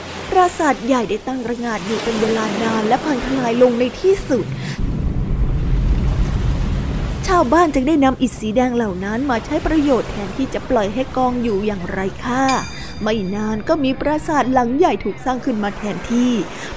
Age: 20-39